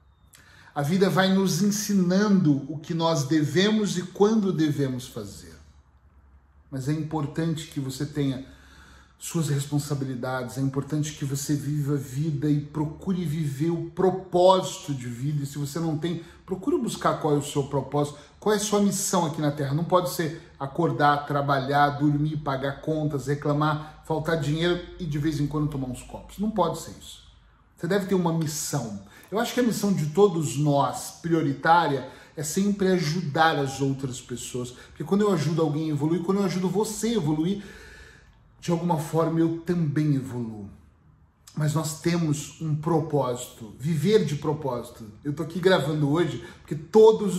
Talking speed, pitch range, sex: 165 wpm, 140-175 Hz, male